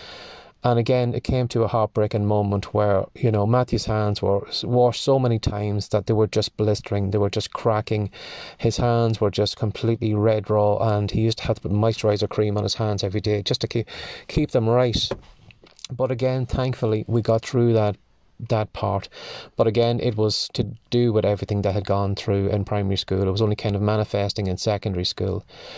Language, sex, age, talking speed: English, male, 30-49, 200 wpm